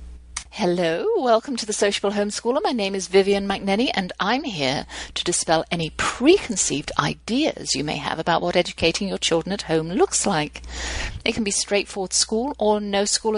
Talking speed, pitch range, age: 175 wpm, 160-215 Hz, 50-69